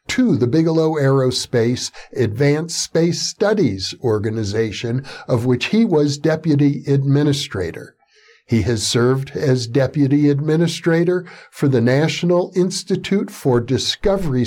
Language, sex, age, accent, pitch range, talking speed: English, male, 60-79, American, 120-170 Hz, 110 wpm